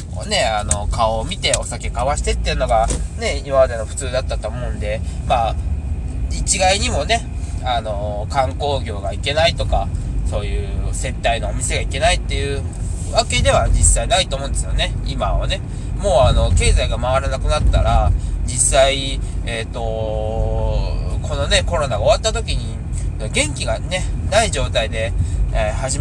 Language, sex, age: Japanese, male, 20-39